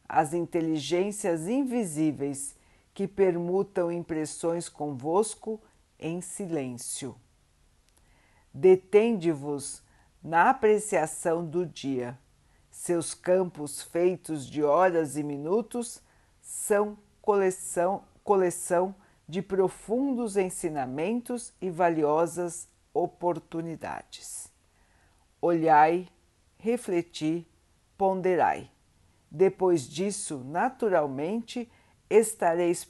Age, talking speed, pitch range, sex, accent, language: 50-69, 65 wpm, 130-185 Hz, female, Brazilian, Portuguese